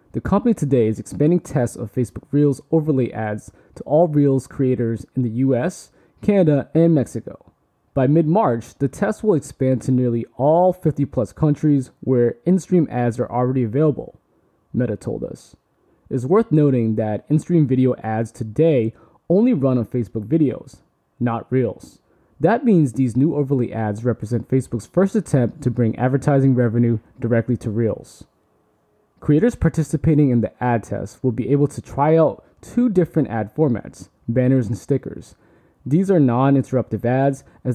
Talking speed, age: 155 wpm, 20-39